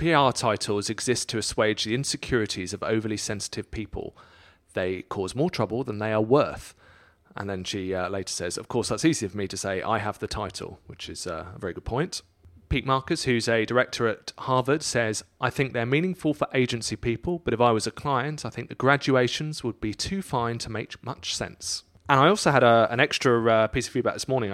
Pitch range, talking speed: 100-125 Hz, 220 wpm